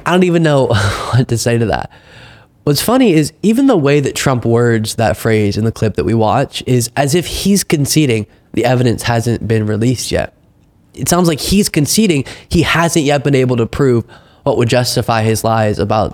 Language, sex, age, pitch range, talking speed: English, male, 20-39, 110-150 Hz, 205 wpm